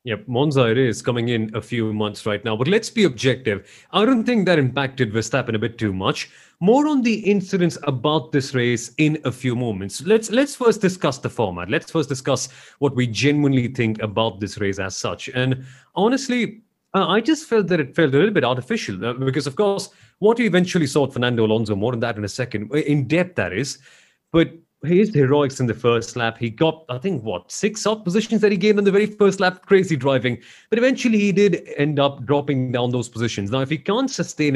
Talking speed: 220 wpm